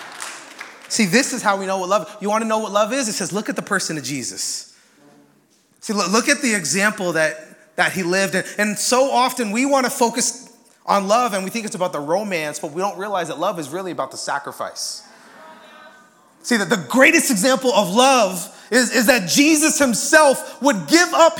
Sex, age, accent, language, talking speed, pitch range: male, 30-49, American, English, 210 wpm, 190-300 Hz